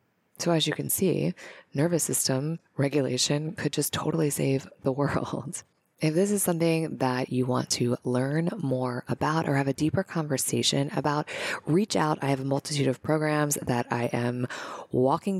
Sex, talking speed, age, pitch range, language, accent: female, 170 wpm, 20-39, 125-150 Hz, English, American